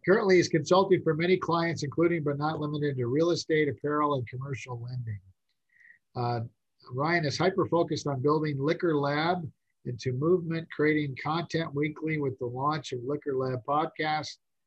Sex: male